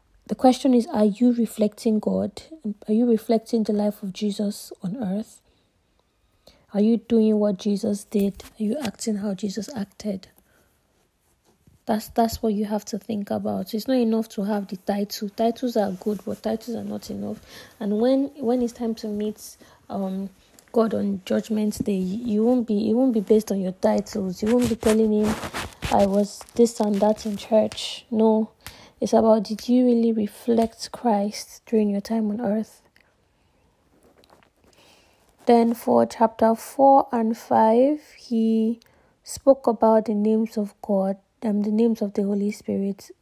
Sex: female